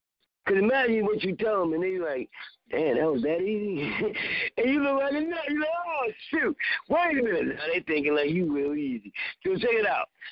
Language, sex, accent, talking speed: English, male, American, 220 wpm